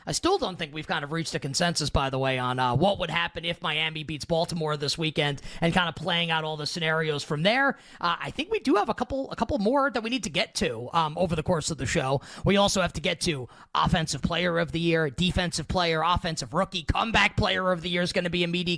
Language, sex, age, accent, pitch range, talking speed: English, male, 30-49, American, 155-190 Hz, 270 wpm